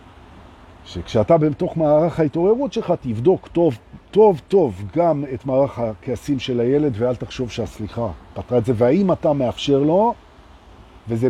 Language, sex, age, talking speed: Hebrew, male, 50-69, 140 wpm